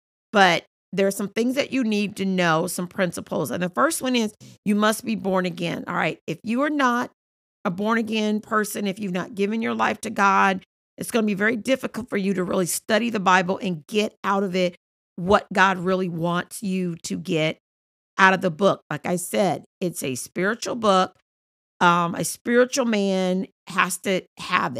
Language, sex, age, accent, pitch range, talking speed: English, female, 40-59, American, 185-215 Hz, 200 wpm